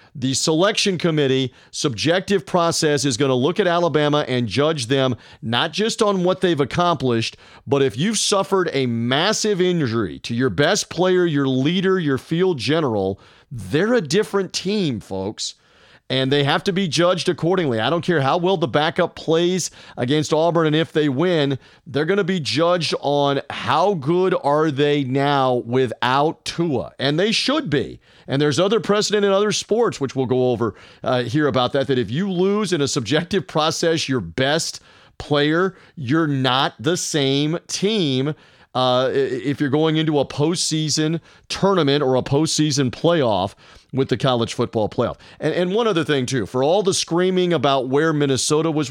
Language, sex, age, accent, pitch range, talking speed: English, male, 40-59, American, 135-175 Hz, 175 wpm